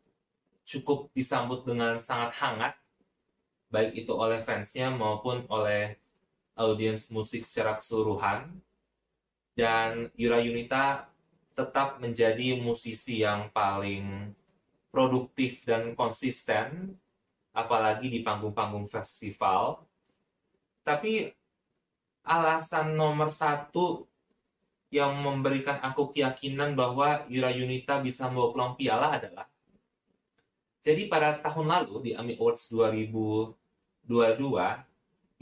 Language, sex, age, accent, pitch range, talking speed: Indonesian, male, 20-39, native, 115-145 Hz, 90 wpm